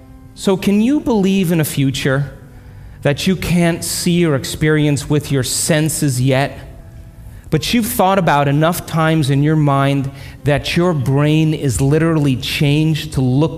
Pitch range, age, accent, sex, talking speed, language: 130-175 Hz, 40-59, American, male, 150 wpm, English